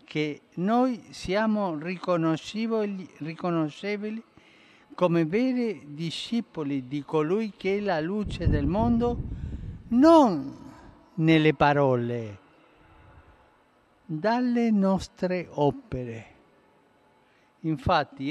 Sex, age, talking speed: male, 50-69, 70 wpm